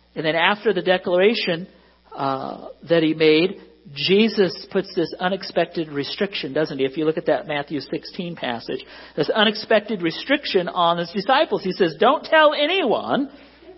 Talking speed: 155 wpm